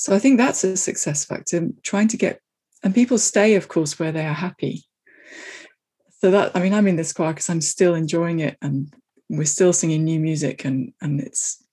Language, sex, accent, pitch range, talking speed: English, female, British, 160-215 Hz, 210 wpm